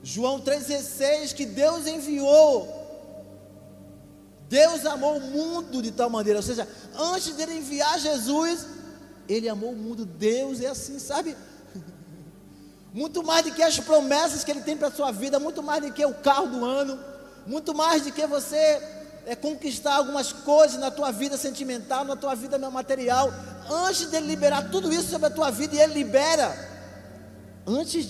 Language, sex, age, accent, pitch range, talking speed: Portuguese, male, 20-39, Brazilian, 175-285 Hz, 165 wpm